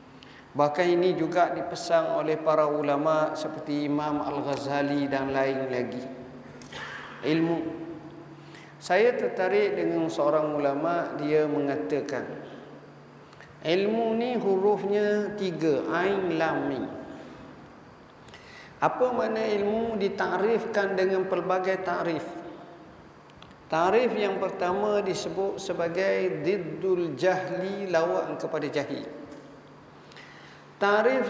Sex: male